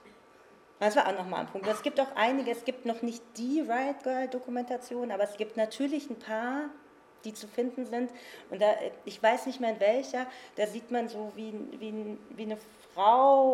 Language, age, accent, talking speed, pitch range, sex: German, 40-59, German, 195 wpm, 195-245 Hz, female